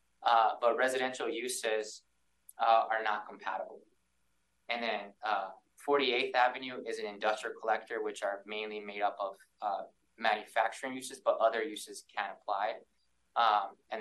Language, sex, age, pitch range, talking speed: English, male, 20-39, 95-125 Hz, 140 wpm